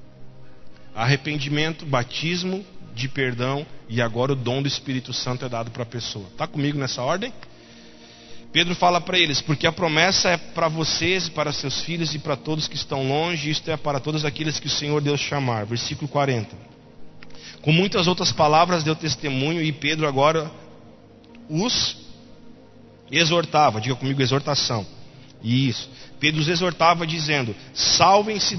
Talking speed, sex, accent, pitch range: 150 wpm, male, Brazilian, 135-180 Hz